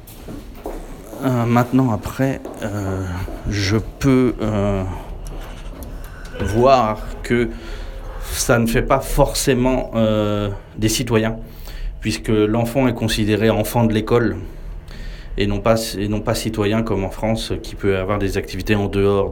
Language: French